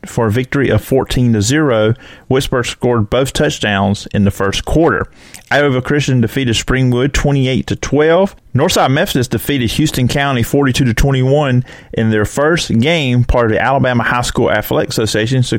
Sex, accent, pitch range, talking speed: male, American, 105-130 Hz, 165 wpm